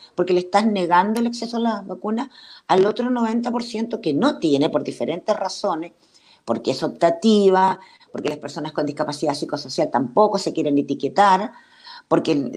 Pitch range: 170-235 Hz